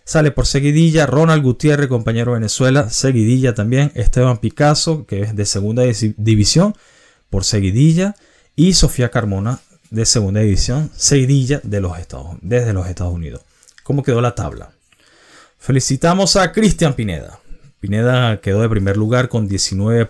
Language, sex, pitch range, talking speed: Spanish, male, 105-150 Hz, 140 wpm